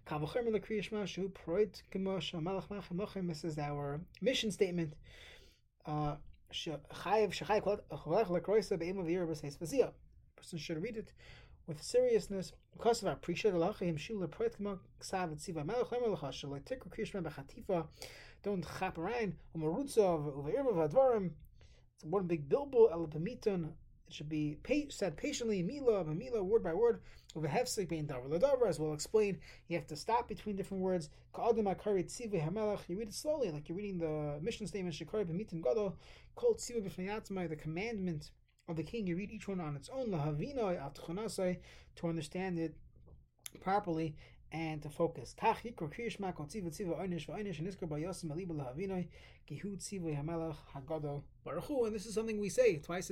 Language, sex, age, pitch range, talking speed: English, male, 20-39, 160-215 Hz, 85 wpm